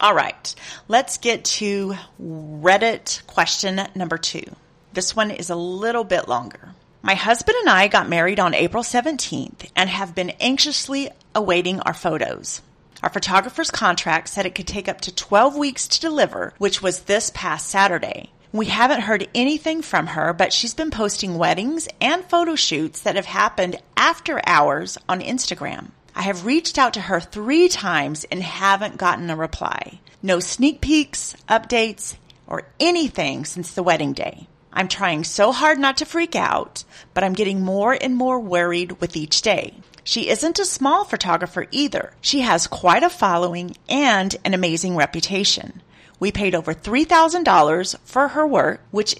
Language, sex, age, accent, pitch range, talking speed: English, female, 40-59, American, 175-260 Hz, 165 wpm